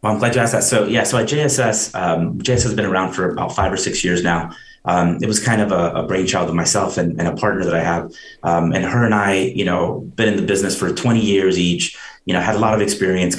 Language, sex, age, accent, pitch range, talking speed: English, male, 30-49, American, 90-110 Hz, 280 wpm